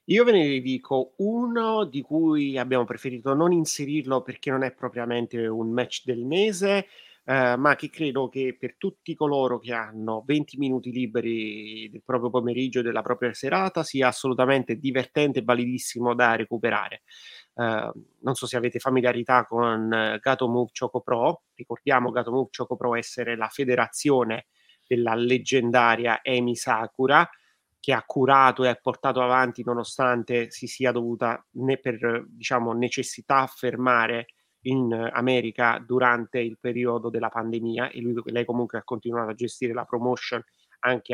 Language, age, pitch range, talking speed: Italian, 30-49, 120-130 Hz, 150 wpm